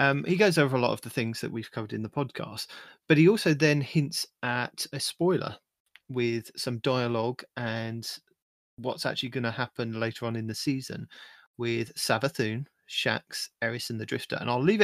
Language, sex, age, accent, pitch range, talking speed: English, male, 30-49, British, 115-145 Hz, 190 wpm